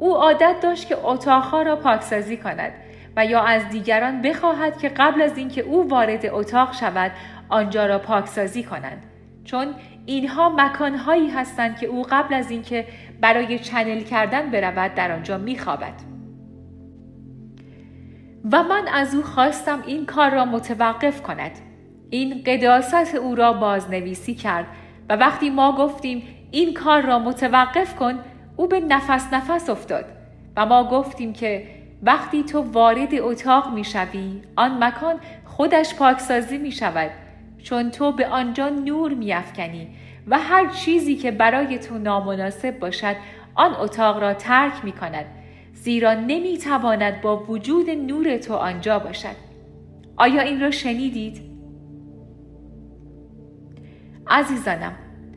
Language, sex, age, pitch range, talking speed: Persian, female, 40-59, 210-280 Hz, 130 wpm